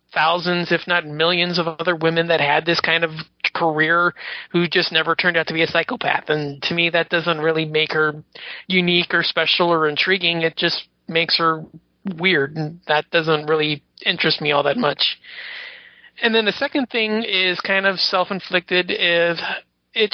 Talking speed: 180 wpm